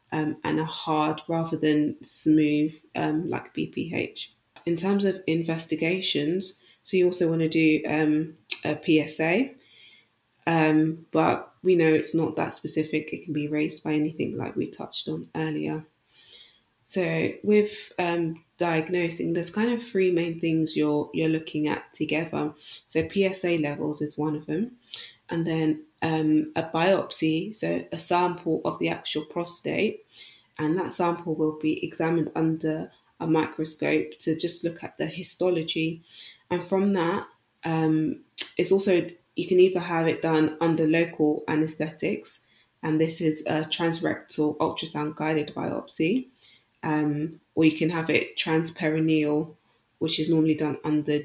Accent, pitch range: British, 155-170 Hz